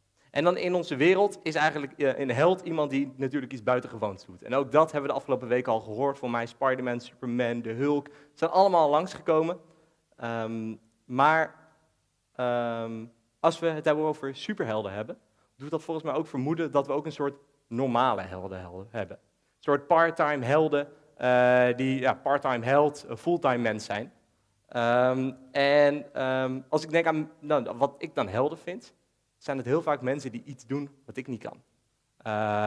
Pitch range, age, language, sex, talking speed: 120-150 Hz, 30-49, Dutch, male, 180 wpm